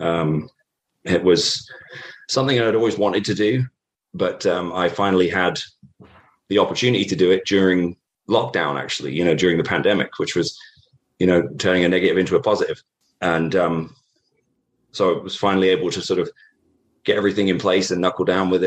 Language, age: English, 30-49